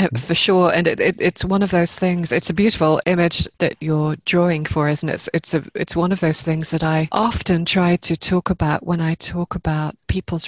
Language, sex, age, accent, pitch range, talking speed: English, female, 30-49, British, 165-195 Hz, 230 wpm